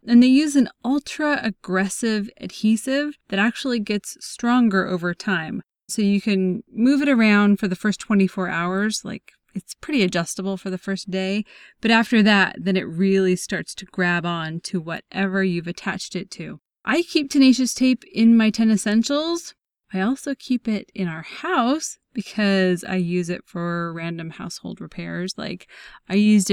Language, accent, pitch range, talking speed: English, American, 185-225 Hz, 165 wpm